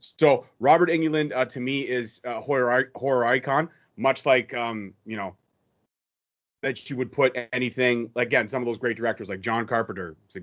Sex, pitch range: male, 120-150 Hz